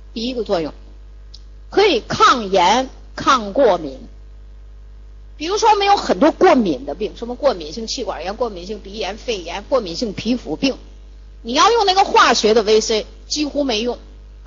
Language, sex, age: Chinese, female, 50-69